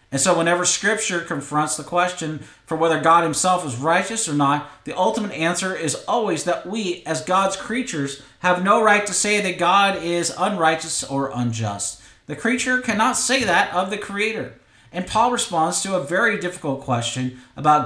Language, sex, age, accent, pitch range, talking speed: English, male, 40-59, American, 135-190 Hz, 180 wpm